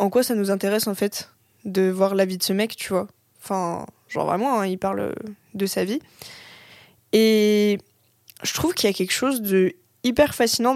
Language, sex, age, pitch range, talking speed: French, female, 20-39, 195-225 Hz, 200 wpm